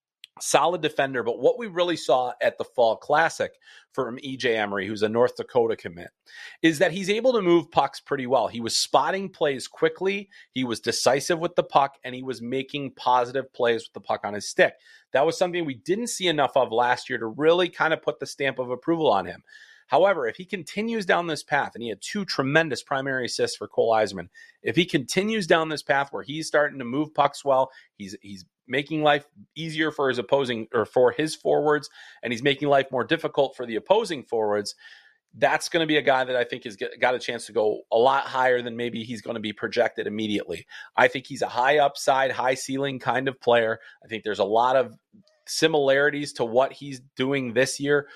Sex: male